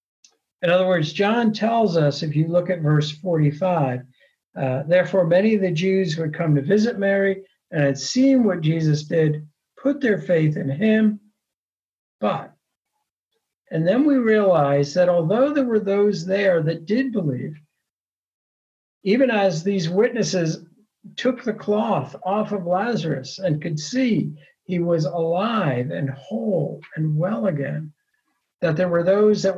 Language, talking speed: English, 150 wpm